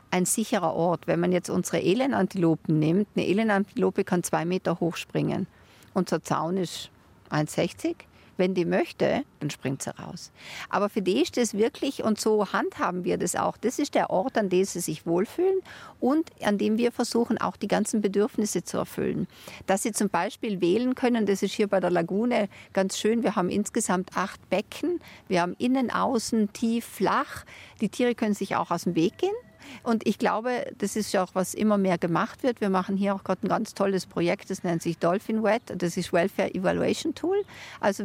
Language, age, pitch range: German, 50-69, 180-230 Hz